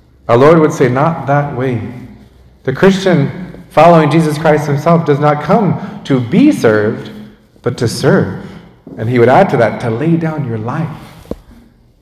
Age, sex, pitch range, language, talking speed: 40-59, male, 120-175 Hz, English, 165 wpm